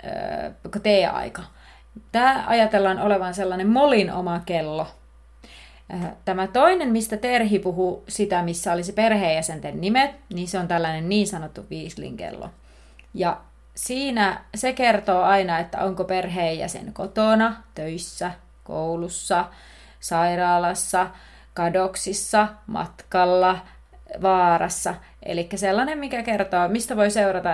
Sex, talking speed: female, 105 wpm